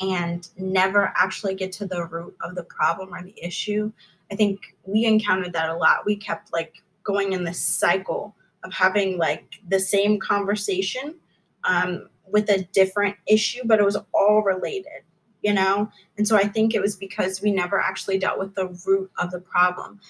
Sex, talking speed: female, 185 wpm